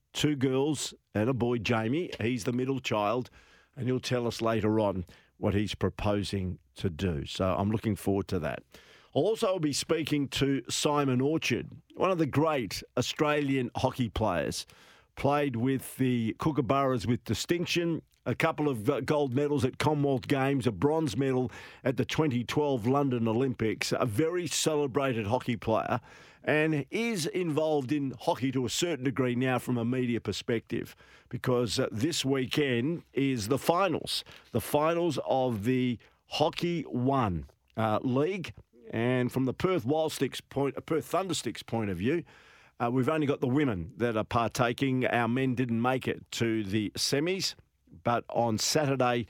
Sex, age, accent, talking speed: male, 50-69, Australian, 155 wpm